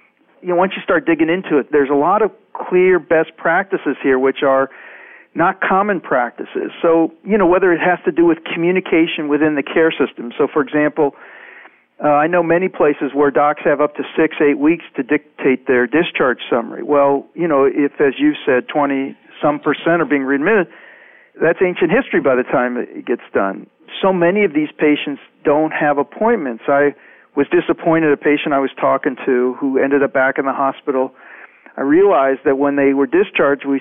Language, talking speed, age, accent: English, 195 wpm, 50-69, American